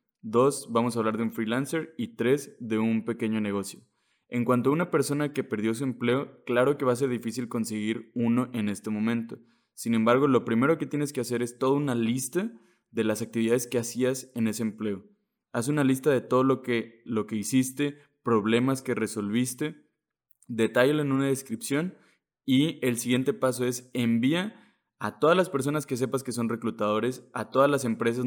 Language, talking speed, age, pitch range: Spanish, 190 wpm, 20-39, 115-135 Hz